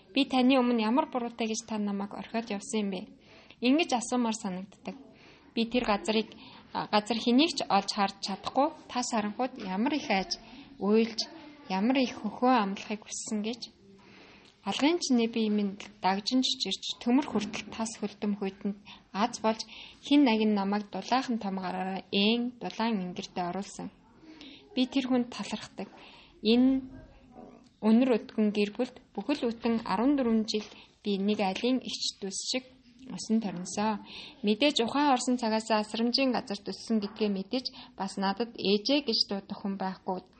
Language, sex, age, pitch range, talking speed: English, female, 20-39, 200-250 Hz, 85 wpm